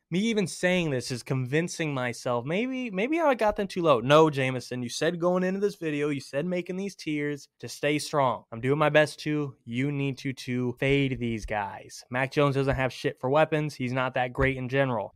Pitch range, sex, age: 130-160 Hz, male, 20-39